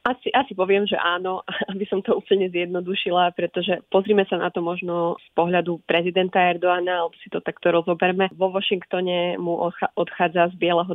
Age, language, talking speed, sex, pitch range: 20-39, Slovak, 170 wpm, female, 170-185 Hz